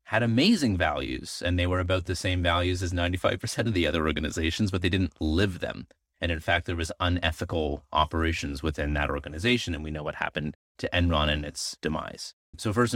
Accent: American